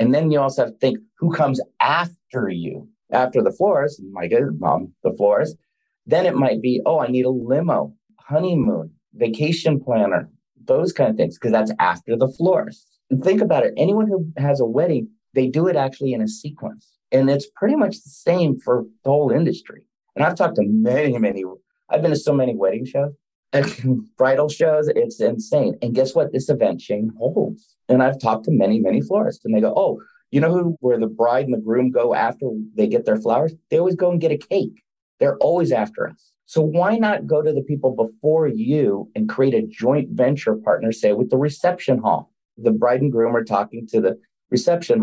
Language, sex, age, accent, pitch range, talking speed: English, male, 30-49, American, 125-185 Hz, 210 wpm